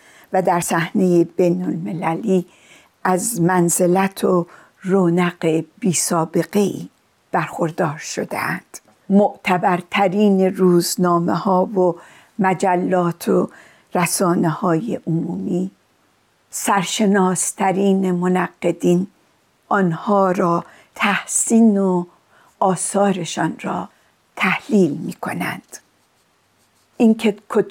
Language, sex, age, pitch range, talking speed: Persian, female, 60-79, 175-205 Hz, 75 wpm